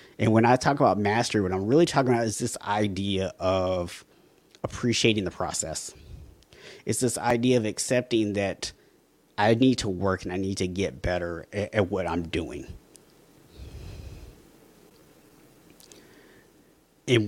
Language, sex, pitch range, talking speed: English, male, 95-120 Hz, 140 wpm